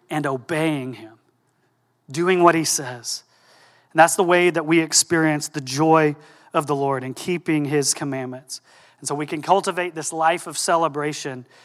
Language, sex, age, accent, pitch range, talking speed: English, male, 30-49, American, 150-180 Hz, 165 wpm